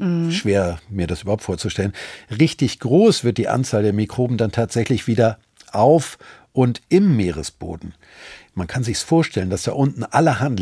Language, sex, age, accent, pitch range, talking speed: German, male, 50-69, German, 100-140 Hz, 155 wpm